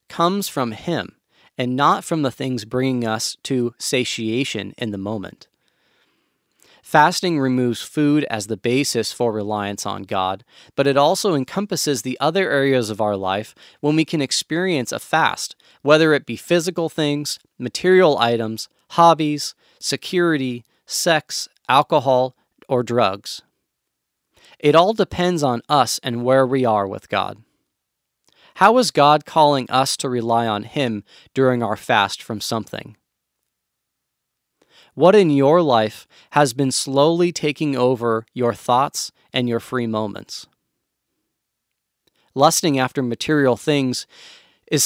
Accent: American